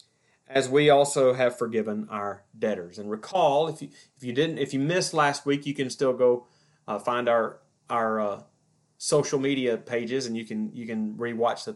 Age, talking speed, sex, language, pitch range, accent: 30-49, 195 wpm, male, English, 120-145 Hz, American